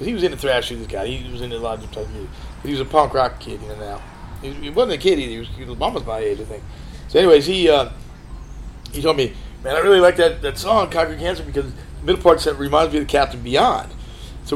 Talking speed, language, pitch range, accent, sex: 270 wpm, English, 115-150 Hz, American, male